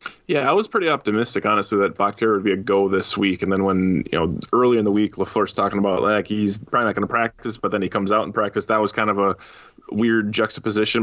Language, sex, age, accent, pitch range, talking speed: English, male, 20-39, American, 105-120 Hz, 255 wpm